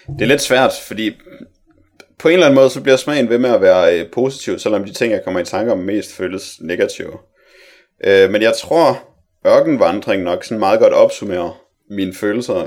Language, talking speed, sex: Danish, 200 wpm, male